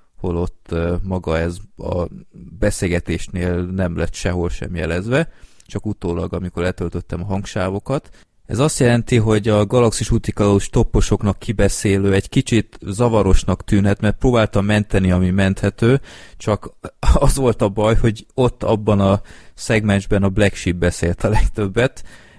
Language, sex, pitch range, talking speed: Hungarian, male, 90-105 Hz, 135 wpm